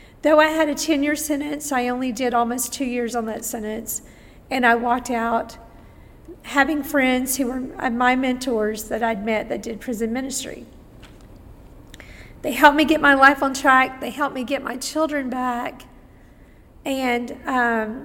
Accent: American